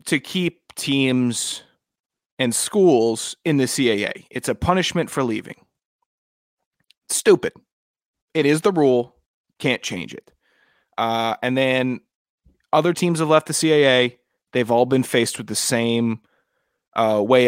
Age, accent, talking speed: 30-49, American, 135 wpm